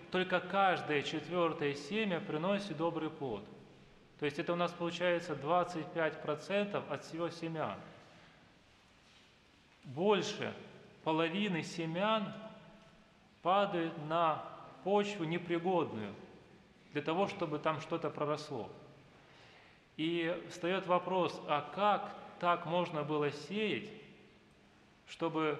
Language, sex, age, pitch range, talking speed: Russian, male, 20-39, 155-190 Hz, 95 wpm